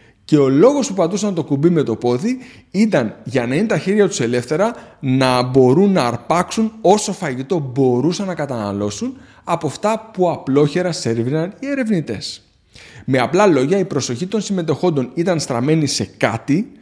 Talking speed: 160 wpm